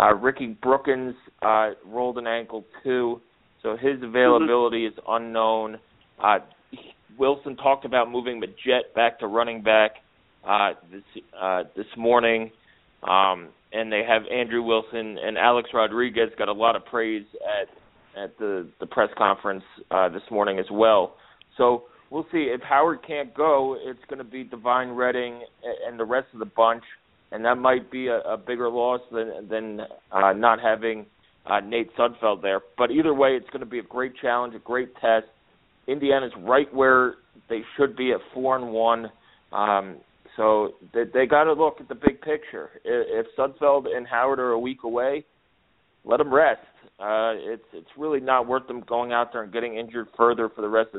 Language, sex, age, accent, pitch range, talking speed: English, male, 30-49, American, 110-130 Hz, 180 wpm